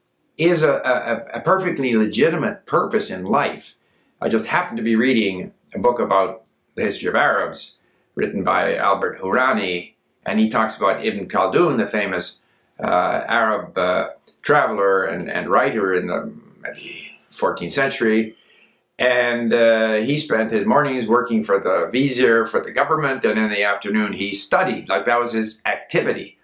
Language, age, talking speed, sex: English, 60-79, 155 wpm, male